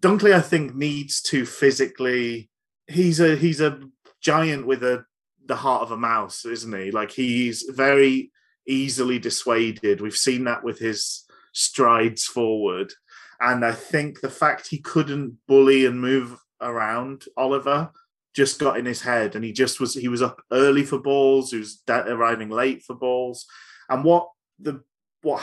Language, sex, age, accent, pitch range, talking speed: English, male, 30-49, British, 115-140 Hz, 165 wpm